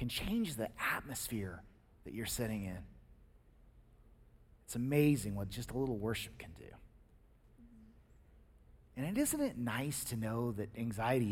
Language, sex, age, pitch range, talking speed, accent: English, male, 30-49, 110-150 Hz, 135 wpm, American